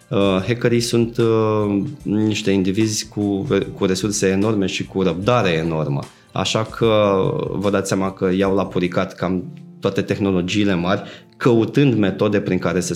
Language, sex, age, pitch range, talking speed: Romanian, male, 20-39, 95-120 Hz, 145 wpm